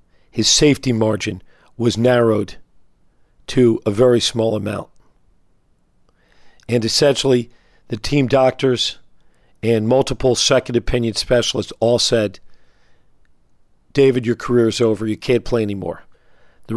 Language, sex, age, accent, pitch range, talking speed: English, male, 50-69, American, 110-130 Hz, 110 wpm